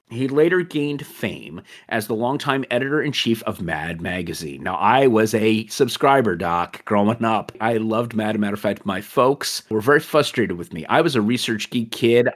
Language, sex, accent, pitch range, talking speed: English, male, American, 100-125 Hz, 190 wpm